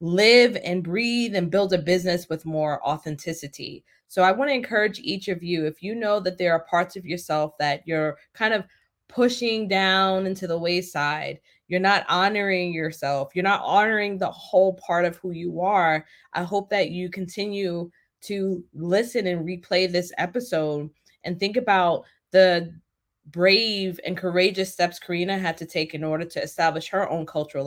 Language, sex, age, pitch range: English, female, 20-39, 165-195 Hz